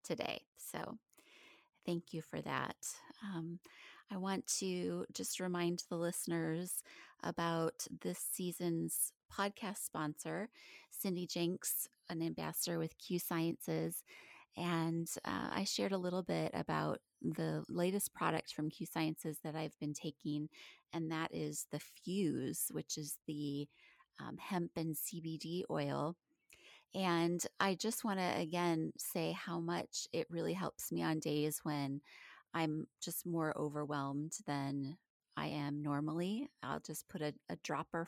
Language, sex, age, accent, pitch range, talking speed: English, female, 30-49, American, 150-180 Hz, 135 wpm